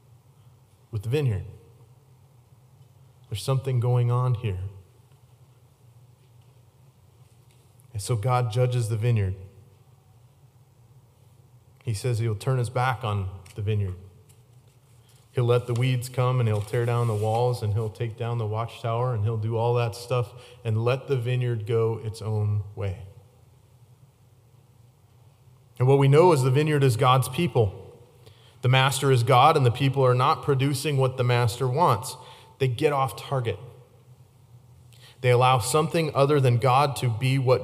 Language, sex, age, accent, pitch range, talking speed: English, male, 30-49, American, 115-125 Hz, 145 wpm